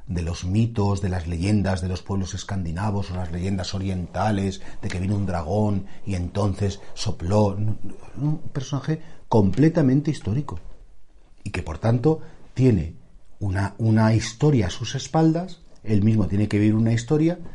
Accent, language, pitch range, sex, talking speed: Spanish, Spanish, 95-145 Hz, male, 150 wpm